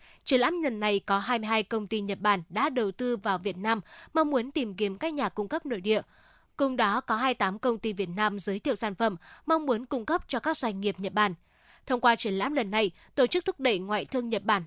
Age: 10-29